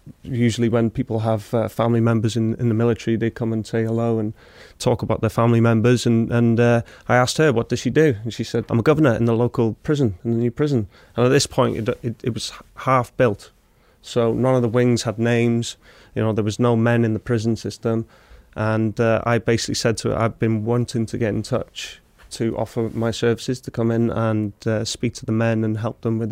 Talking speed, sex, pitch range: 235 wpm, male, 115-125 Hz